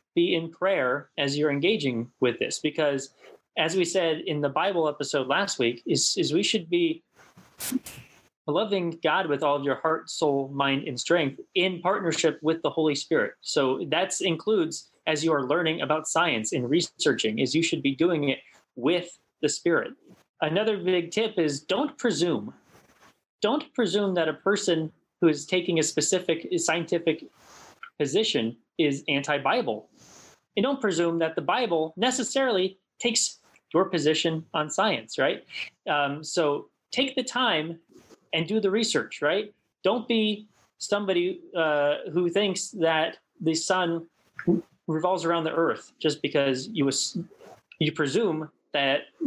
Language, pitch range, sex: English, 150-185 Hz, male